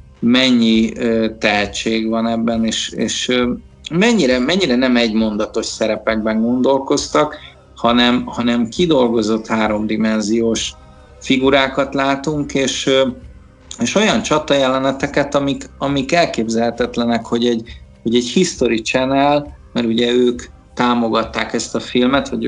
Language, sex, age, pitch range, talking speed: Hungarian, male, 50-69, 115-135 Hz, 105 wpm